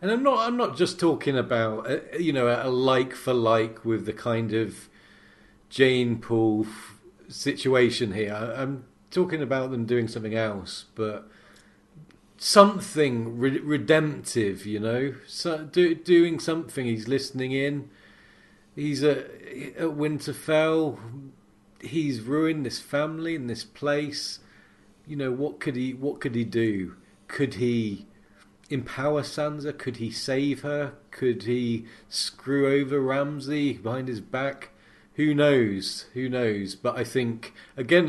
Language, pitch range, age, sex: English, 110-145 Hz, 40-59, male